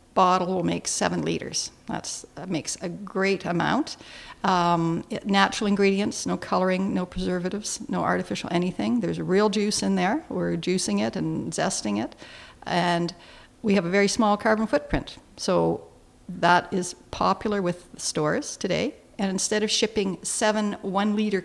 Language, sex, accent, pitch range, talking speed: English, female, American, 180-210 Hz, 155 wpm